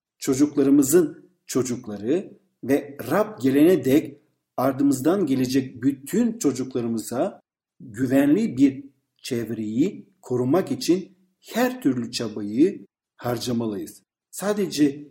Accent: native